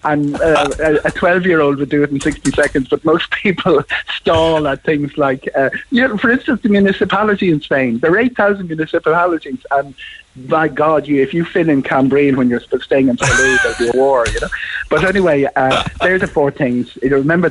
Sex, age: male, 60-79